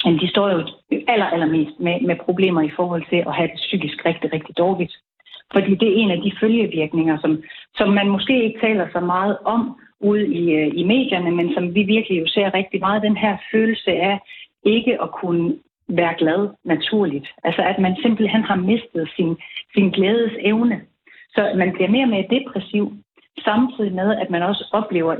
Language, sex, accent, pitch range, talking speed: Danish, female, native, 175-230 Hz, 190 wpm